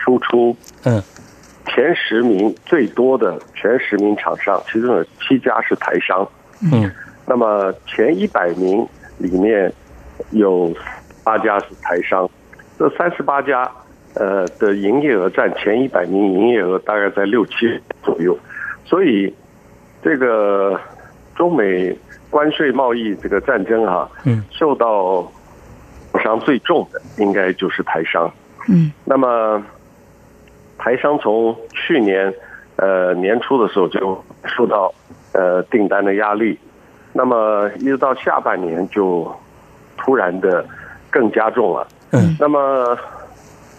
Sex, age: male, 50-69